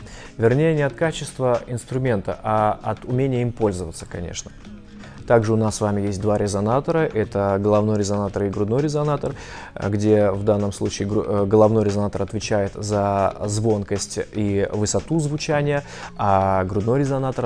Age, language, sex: 20-39, Russian, male